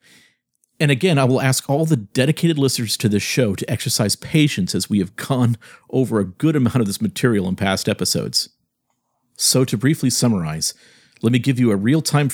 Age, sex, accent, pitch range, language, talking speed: 50-69, male, American, 95-130 Hz, English, 190 wpm